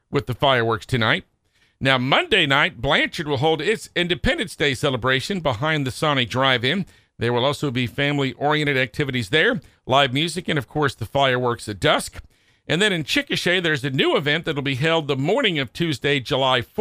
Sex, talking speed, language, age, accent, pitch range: male, 180 wpm, English, 50-69, American, 130-160 Hz